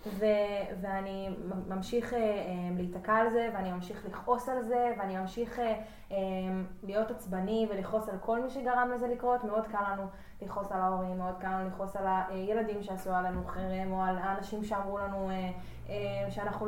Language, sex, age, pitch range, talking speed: Hebrew, female, 20-39, 190-235 Hz, 180 wpm